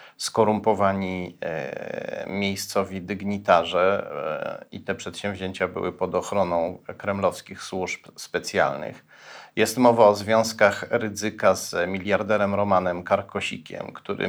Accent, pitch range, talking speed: native, 100-130 Hz, 90 wpm